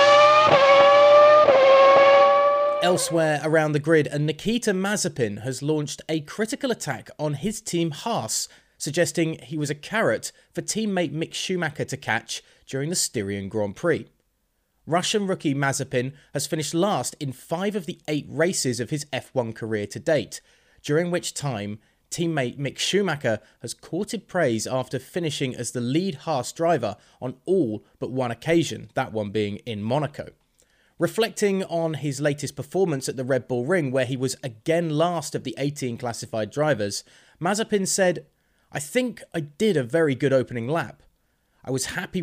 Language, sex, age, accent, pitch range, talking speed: English, male, 20-39, British, 130-180 Hz, 155 wpm